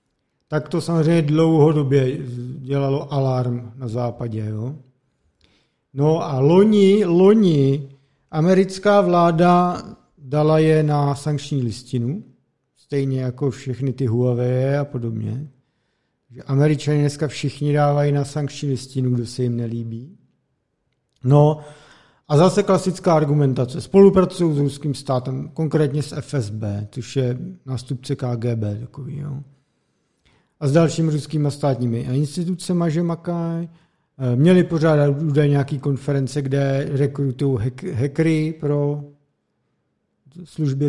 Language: Czech